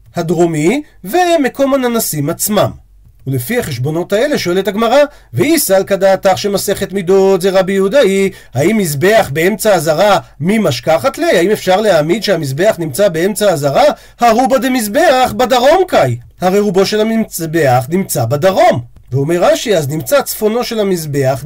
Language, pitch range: Hebrew, 155-245 Hz